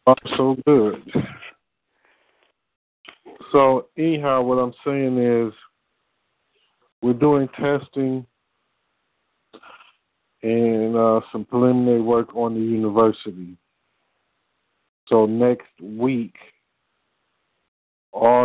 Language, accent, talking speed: English, American, 80 wpm